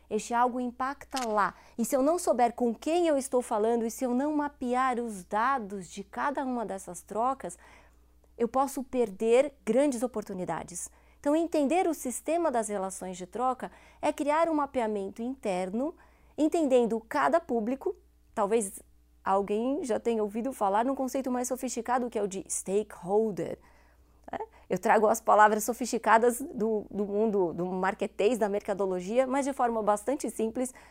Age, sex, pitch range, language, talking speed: 20-39, female, 210-265 Hz, Portuguese, 155 wpm